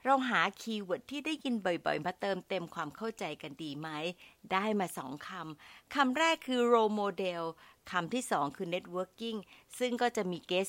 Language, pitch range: Thai, 170-235 Hz